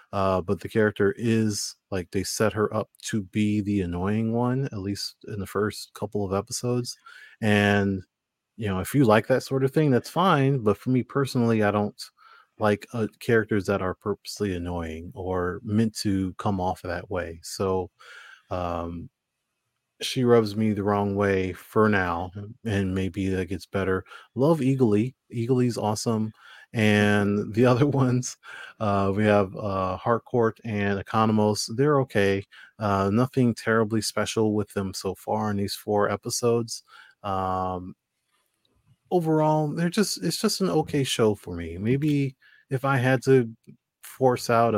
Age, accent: 30-49, American